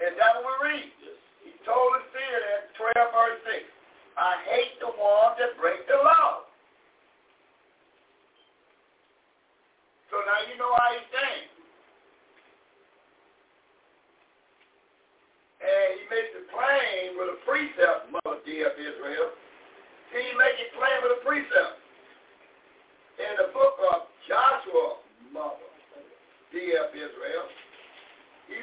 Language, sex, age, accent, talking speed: English, male, 60-79, American, 115 wpm